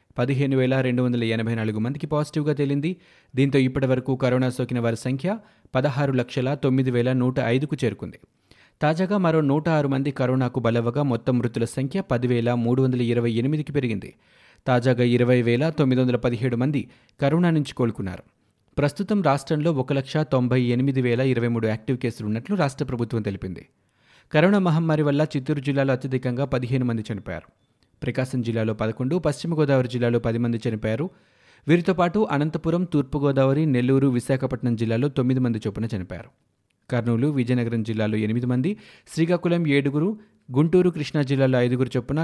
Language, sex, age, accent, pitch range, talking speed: Telugu, male, 30-49, native, 120-145 Hz, 150 wpm